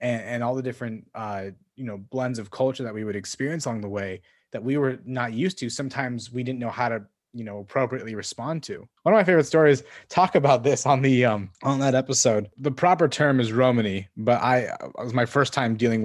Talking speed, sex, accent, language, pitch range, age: 230 wpm, male, American, English, 105-130 Hz, 30-49